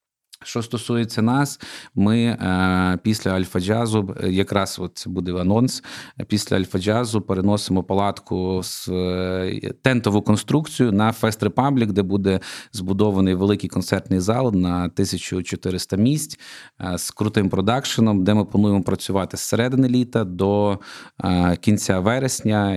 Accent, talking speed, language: native, 120 wpm, Ukrainian